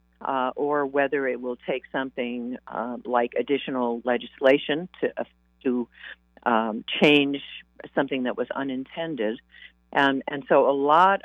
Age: 50-69